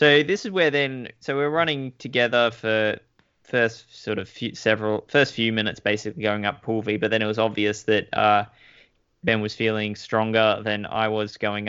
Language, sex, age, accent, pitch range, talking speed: English, male, 10-29, Australian, 105-115 Hz, 195 wpm